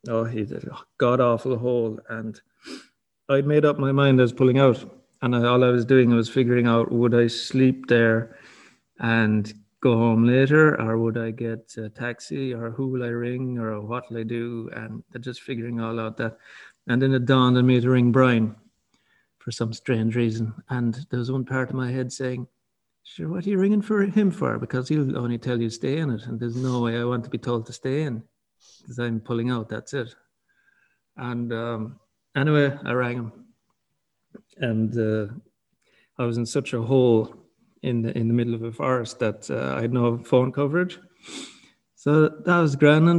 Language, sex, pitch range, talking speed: English, male, 115-140 Hz, 200 wpm